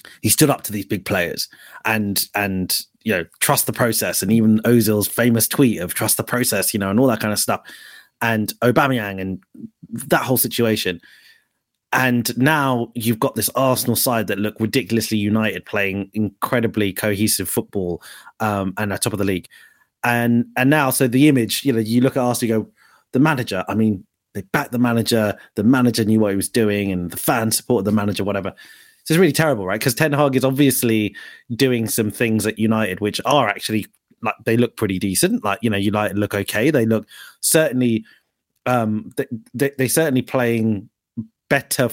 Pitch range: 105-130 Hz